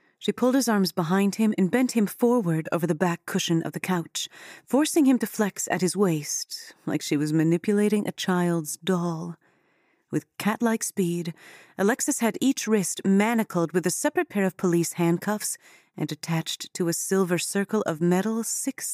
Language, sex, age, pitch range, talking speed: English, female, 30-49, 165-210 Hz, 175 wpm